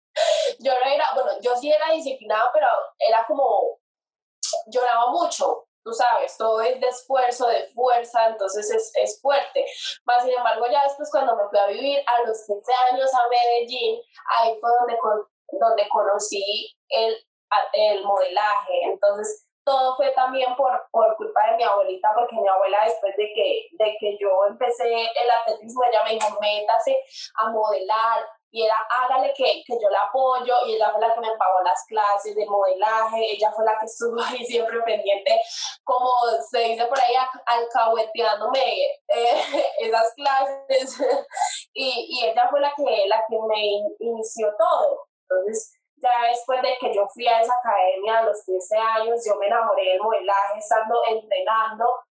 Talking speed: 170 wpm